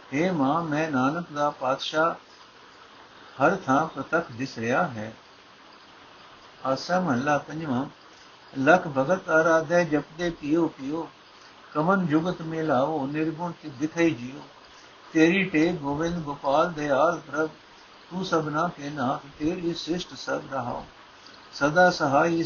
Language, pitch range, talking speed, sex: Punjabi, 140-170 Hz, 120 wpm, male